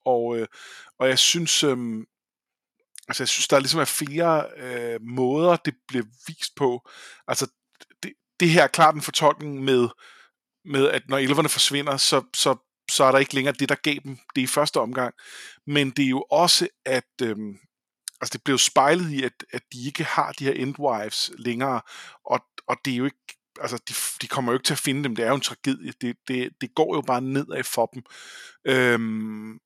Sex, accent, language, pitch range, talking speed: male, native, Danish, 120-150 Hz, 205 wpm